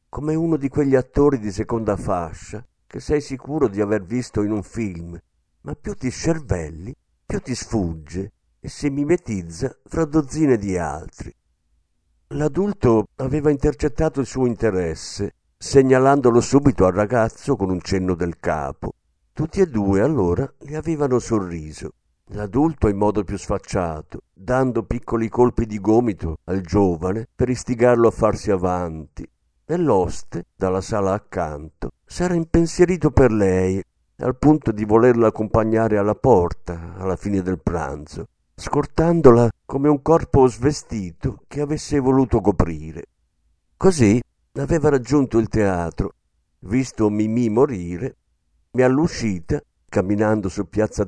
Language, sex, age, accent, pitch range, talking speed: Italian, male, 50-69, native, 90-135 Hz, 130 wpm